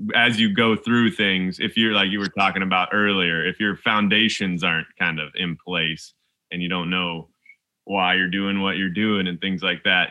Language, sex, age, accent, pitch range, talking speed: English, male, 20-39, American, 90-110 Hz, 210 wpm